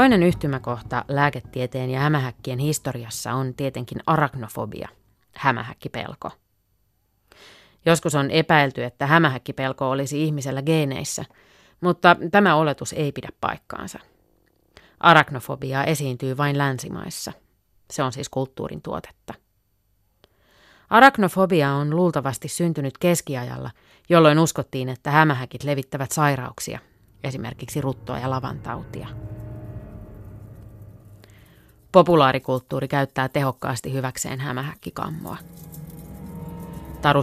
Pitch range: 125-155 Hz